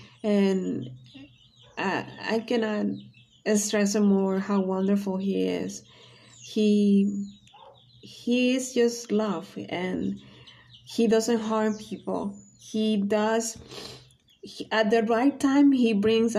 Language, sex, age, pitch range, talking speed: English, female, 30-49, 185-220 Hz, 105 wpm